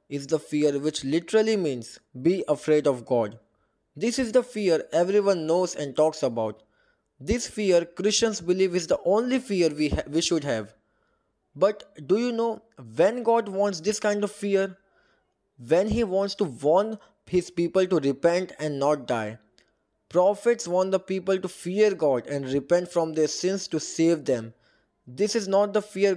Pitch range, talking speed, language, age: 145-195 Hz, 170 wpm, English, 20-39